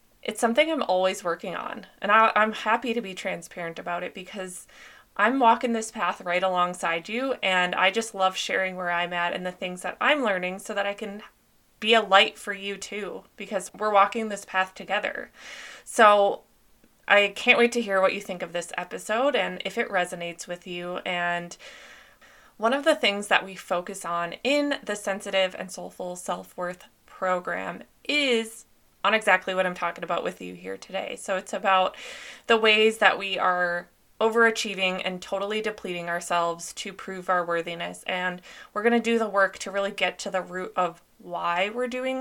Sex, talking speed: female, 185 wpm